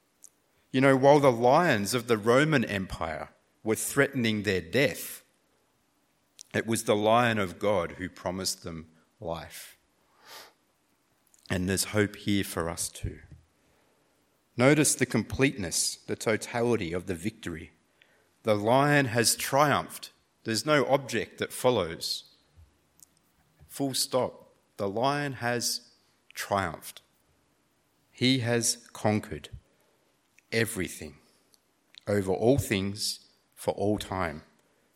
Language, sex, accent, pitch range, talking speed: English, male, Australian, 95-130 Hz, 110 wpm